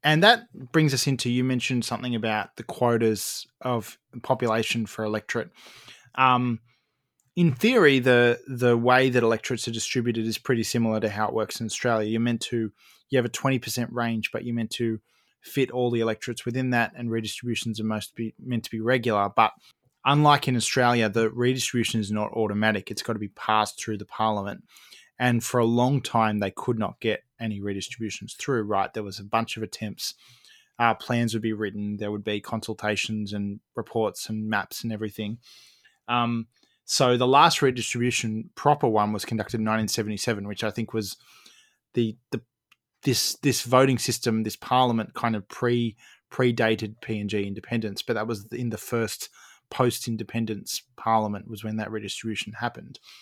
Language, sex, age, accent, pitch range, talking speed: English, male, 20-39, Australian, 110-125 Hz, 175 wpm